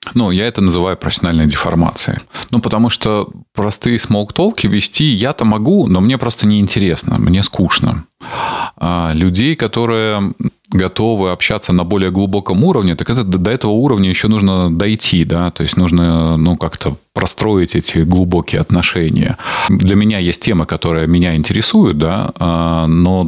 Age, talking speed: 20-39, 140 wpm